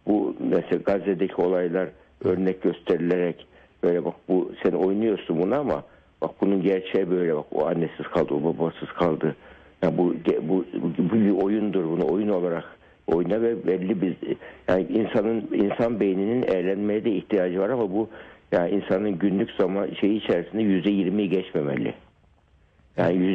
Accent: native